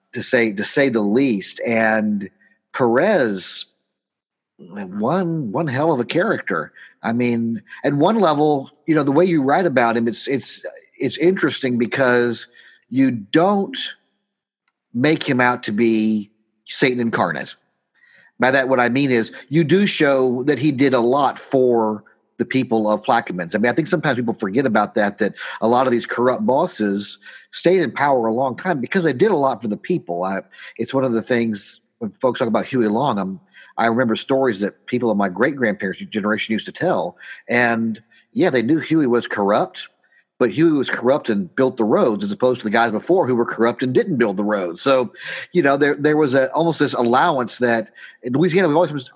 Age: 50-69